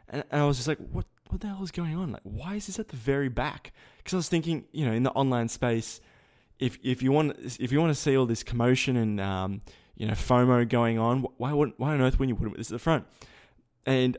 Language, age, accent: English, 20-39, Australian